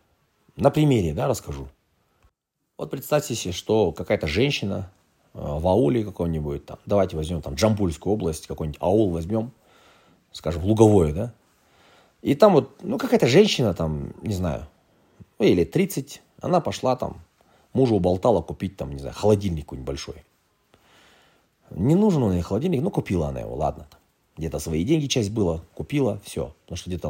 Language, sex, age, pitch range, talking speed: Russian, male, 30-49, 85-125 Hz, 155 wpm